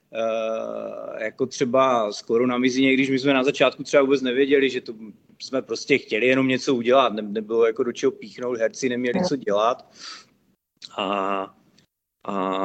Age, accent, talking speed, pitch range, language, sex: 30-49, native, 150 wpm, 120-155 Hz, Czech, male